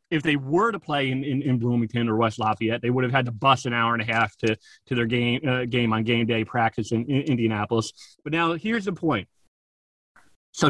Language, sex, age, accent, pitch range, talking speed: English, male, 30-49, American, 120-155 Hz, 235 wpm